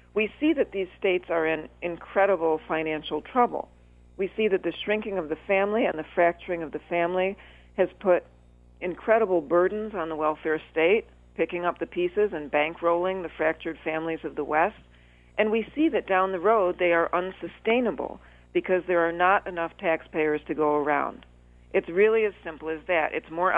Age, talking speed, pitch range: 50-69, 180 wpm, 155-195 Hz